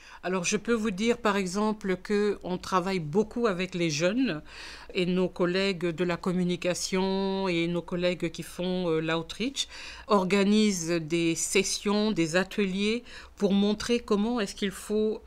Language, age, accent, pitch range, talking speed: French, 50-69, French, 175-210 Hz, 140 wpm